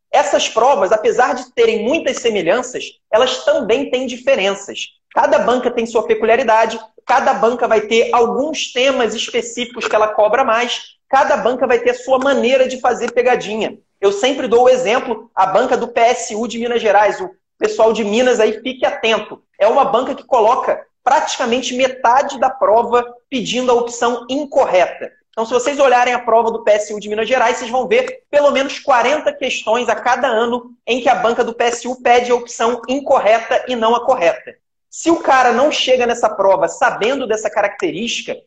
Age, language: 30-49, Portuguese